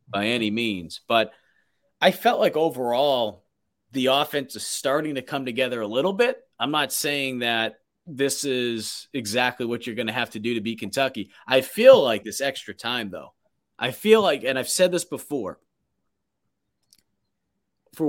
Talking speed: 170 wpm